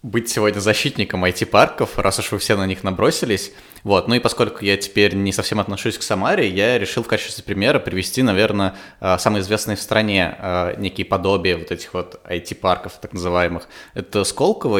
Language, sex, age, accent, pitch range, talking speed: Russian, male, 20-39, native, 95-110 Hz, 175 wpm